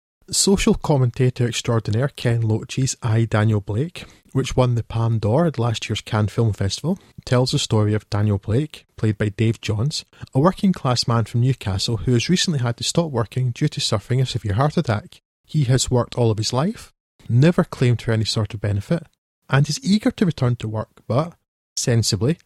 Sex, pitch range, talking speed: male, 115-145 Hz, 190 wpm